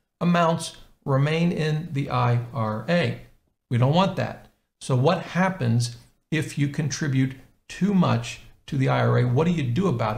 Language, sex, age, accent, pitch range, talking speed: English, male, 50-69, American, 120-160 Hz, 145 wpm